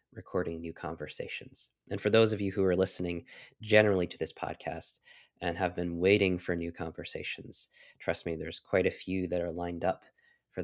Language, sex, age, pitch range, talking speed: English, male, 20-39, 85-100 Hz, 185 wpm